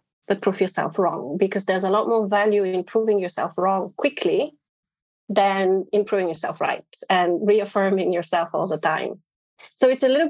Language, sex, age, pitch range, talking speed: English, female, 30-49, 185-220 Hz, 170 wpm